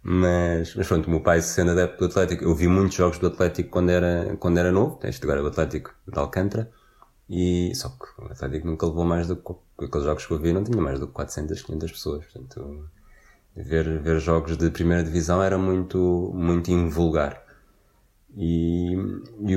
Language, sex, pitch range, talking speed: Portuguese, male, 85-105 Hz, 195 wpm